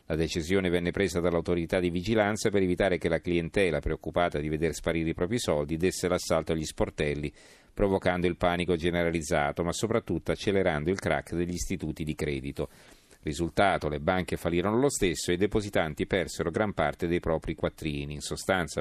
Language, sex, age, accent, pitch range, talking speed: Italian, male, 40-59, native, 85-100 Hz, 170 wpm